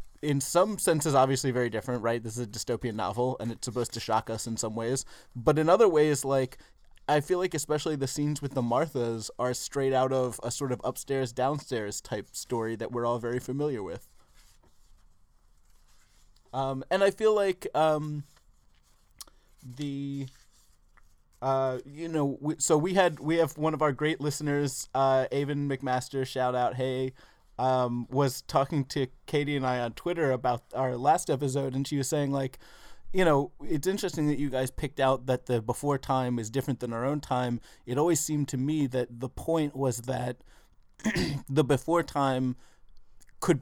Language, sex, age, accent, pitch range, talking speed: English, male, 20-39, American, 120-145 Hz, 180 wpm